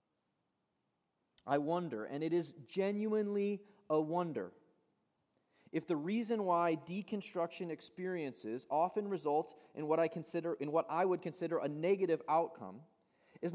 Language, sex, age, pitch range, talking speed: English, male, 30-49, 145-180 Hz, 130 wpm